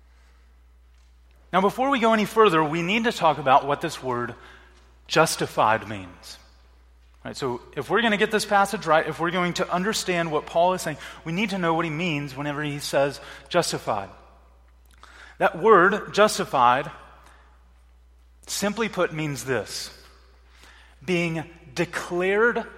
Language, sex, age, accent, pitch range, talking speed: English, male, 30-49, American, 115-190 Hz, 140 wpm